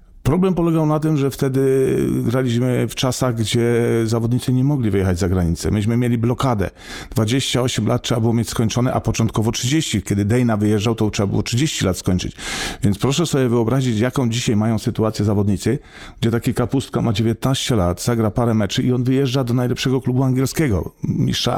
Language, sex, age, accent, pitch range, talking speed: Polish, male, 40-59, native, 105-130 Hz, 175 wpm